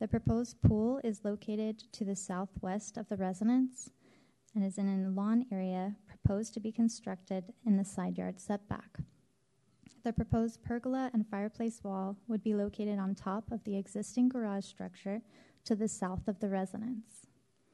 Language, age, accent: English, 20-39, American